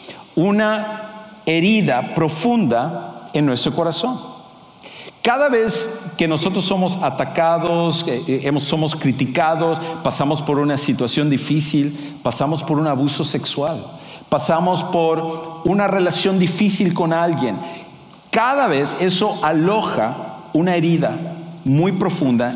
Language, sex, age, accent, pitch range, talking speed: English, male, 50-69, Mexican, 140-180 Hz, 105 wpm